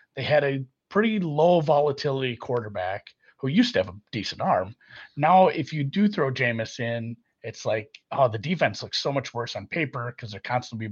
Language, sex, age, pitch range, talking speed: English, male, 30-49, 125-175 Hz, 190 wpm